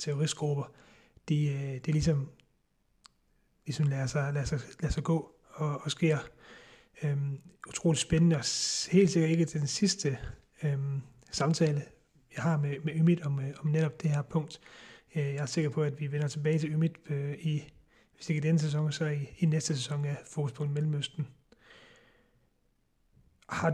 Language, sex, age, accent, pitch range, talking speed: Danish, male, 30-49, native, 145-165 Hz, 170 wpm